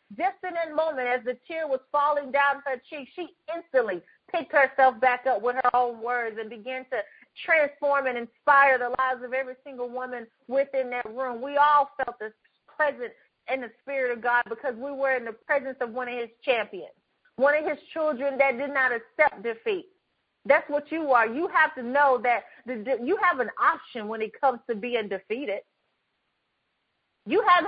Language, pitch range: English, 250-325 Hz